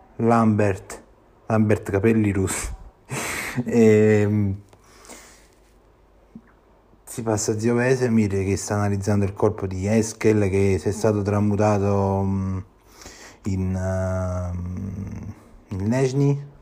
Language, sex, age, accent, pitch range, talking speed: Italian, male, 30-49, native, 95-110 Hz, 85 wpm